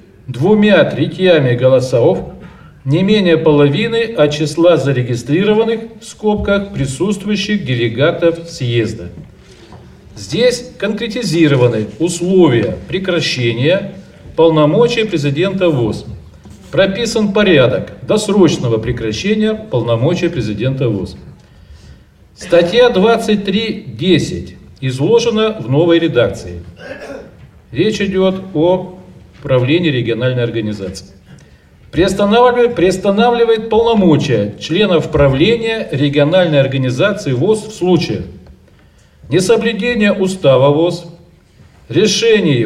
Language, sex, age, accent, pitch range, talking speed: Russian, male, 50-69, native, 130-200 Hz, 75 wpm